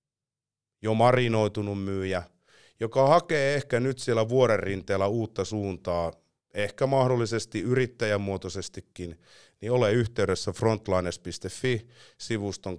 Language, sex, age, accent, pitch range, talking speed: Finnish, male, 30-49, native, 95-120 Hz, 85 wpm